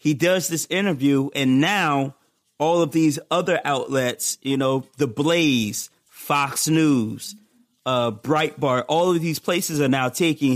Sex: male